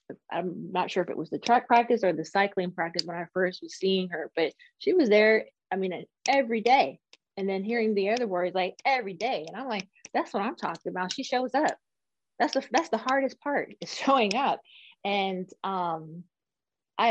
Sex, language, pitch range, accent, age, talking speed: female, English, 175-200 Hz, American, 20-39, 205 wpm